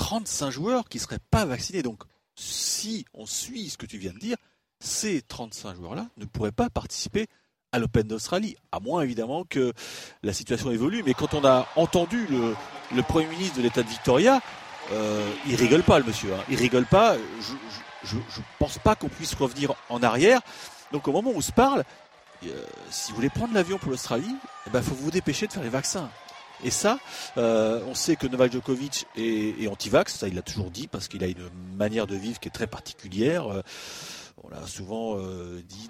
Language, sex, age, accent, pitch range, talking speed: French, male, 40-59, French, 105-165 Hz, 205 wpm